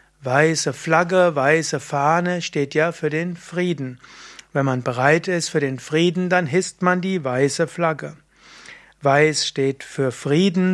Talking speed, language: 145 wpm, German